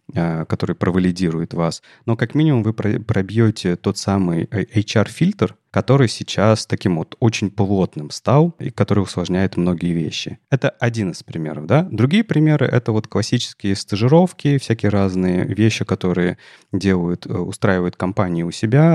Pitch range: 90-125 Hz